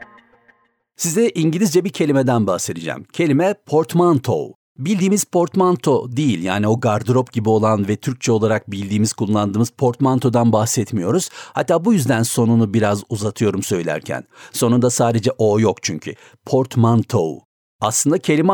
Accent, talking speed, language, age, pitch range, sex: native, 120 wpm, Turkish, 60-79, 110-150 Hz, male